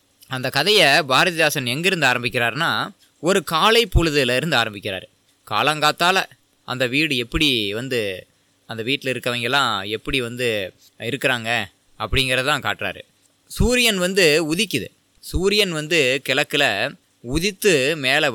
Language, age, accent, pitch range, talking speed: Tamil, 20-39, native, 135-185 Hz, 100 wpm